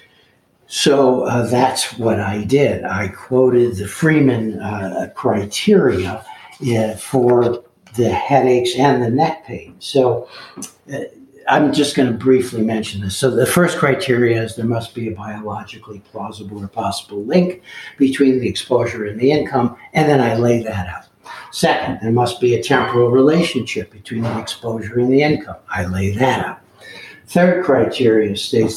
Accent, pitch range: American, 110-130 Hz